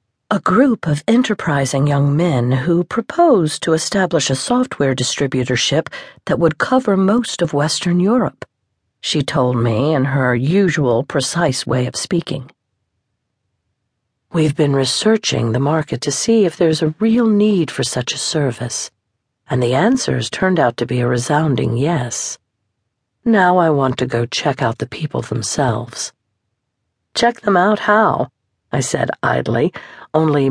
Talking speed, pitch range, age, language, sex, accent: 145 wpm, 120-160 Hz, 50-69, English, female, American